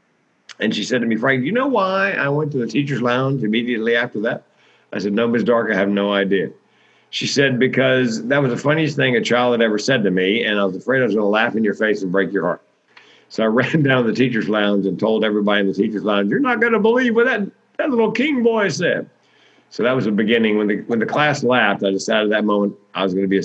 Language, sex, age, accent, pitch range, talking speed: English, male, 50-69, American, 100-130 Hz, 275 wpm